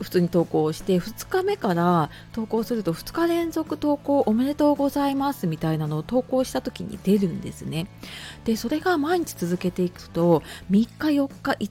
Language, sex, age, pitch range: Japanese, female, 30-49, 175-245 Hz